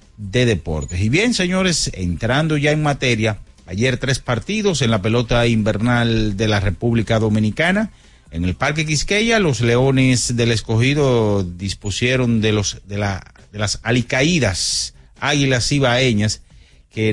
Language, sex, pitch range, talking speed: Spanish, male, 105-130 Hz, 135 wpm